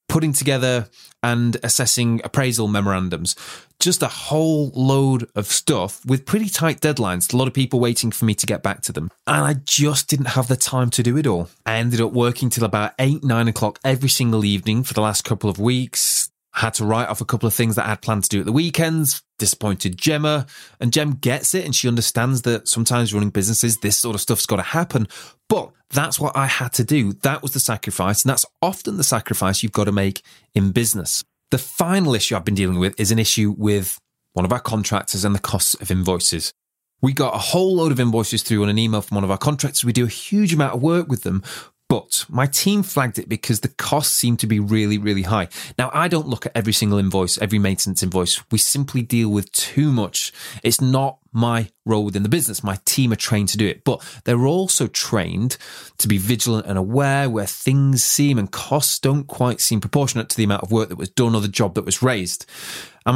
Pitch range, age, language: 105-135 Hz, 30-49, English